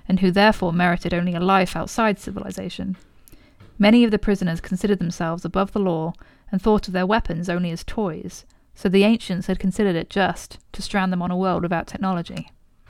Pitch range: 175-205 Hz